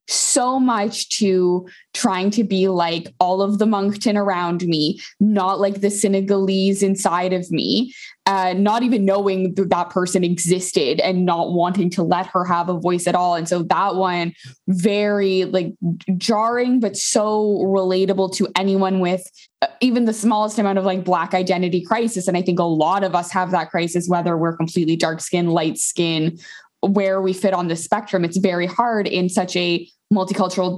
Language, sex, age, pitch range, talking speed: English, female, 20-39, 180-210 Hz, 175 wpm